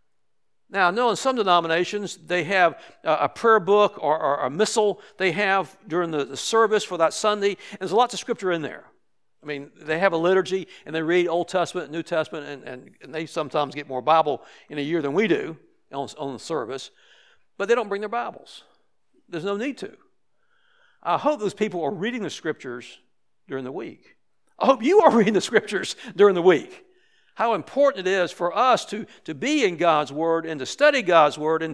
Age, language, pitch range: 60-79, English, 160-225 Hz